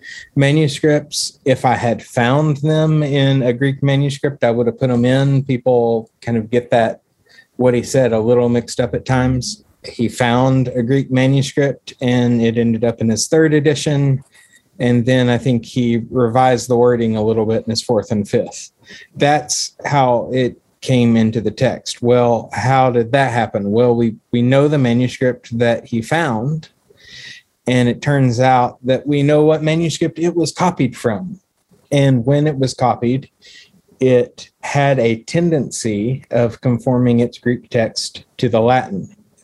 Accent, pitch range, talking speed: American, 115-135 Hz, 165 wpm